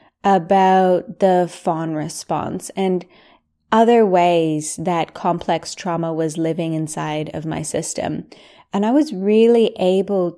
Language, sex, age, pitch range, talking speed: English, female, 20-39, 170-210 Hz, 120 wpm